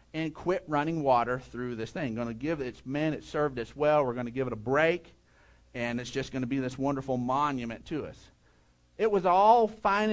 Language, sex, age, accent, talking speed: English, male, 50-69, American, 230 wpm